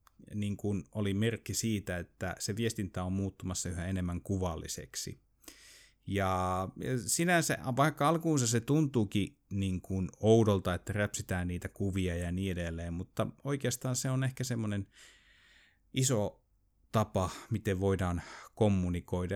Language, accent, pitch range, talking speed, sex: Finnish, native, 90-115 Hz, 125 wpm, male